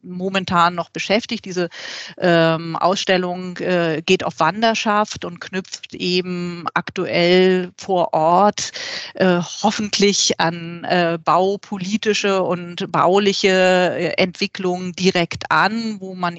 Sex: female